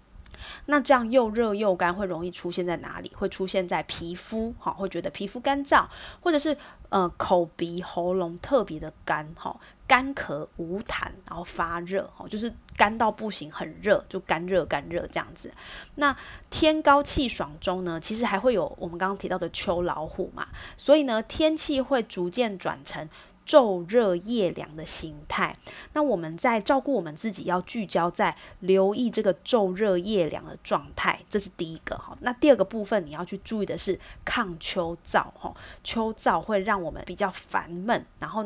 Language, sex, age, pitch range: Chinese, female, 20-39, 175-235 Hz